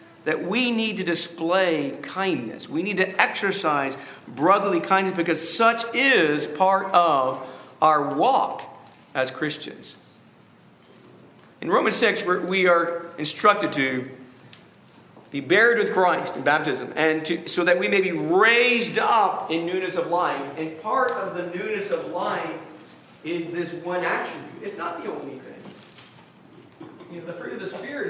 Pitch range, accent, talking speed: 160-210 Hz, American, 150 wpm